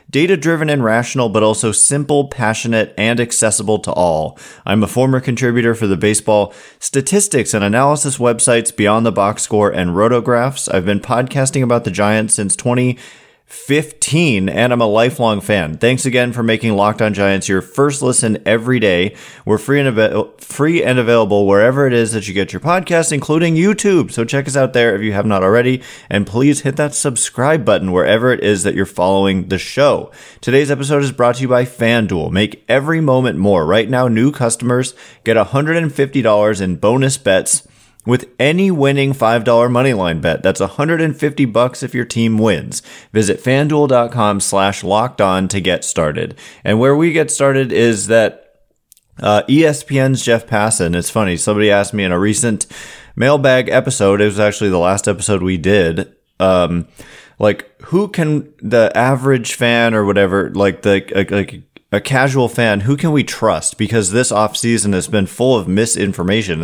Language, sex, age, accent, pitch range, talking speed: English, male, 30-49, American, 105-135 Hz, 175 wpm